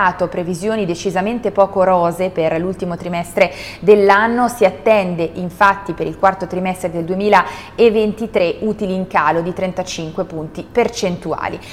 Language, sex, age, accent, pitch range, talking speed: Italian, female, 20-39, native, 180-220 Hz, 125 wpm